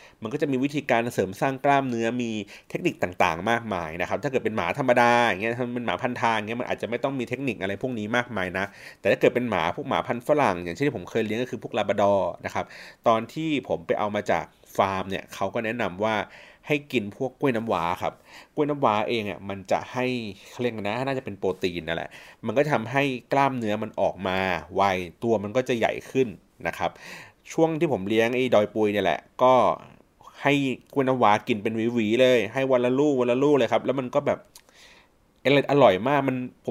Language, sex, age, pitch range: Thai, male, 30-49, 100-130 Hz